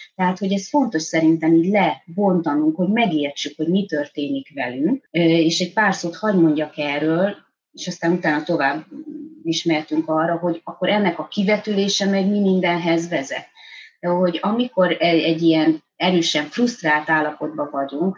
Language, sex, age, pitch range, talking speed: Hungarian, female, 30-49, 155-200 Hz, 145 wpm